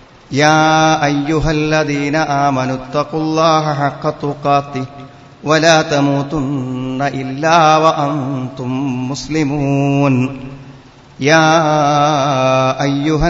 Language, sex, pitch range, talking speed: Malayalam, male, 130-155 Hz, 70 wpm